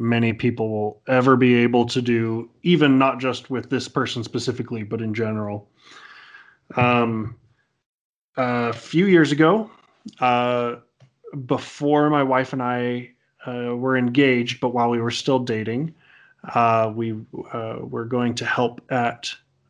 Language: English